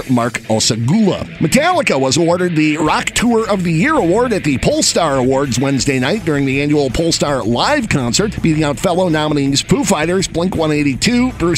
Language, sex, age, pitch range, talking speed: English, male, 50-69, 130-180 Hz, 165 wpm